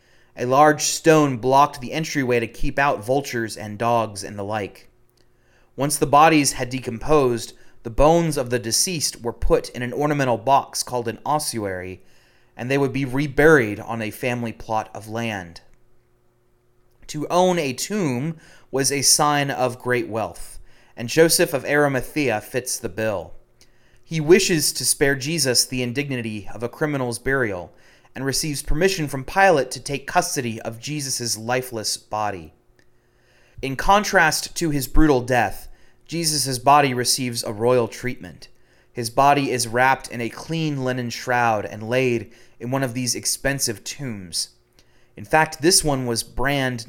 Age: 30-49